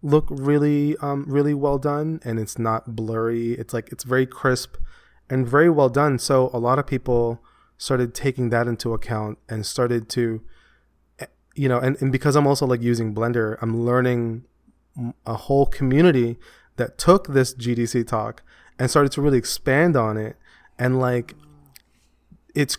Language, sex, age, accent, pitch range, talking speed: English, male, 20-39, American, 115-140 Hz, 165 wpm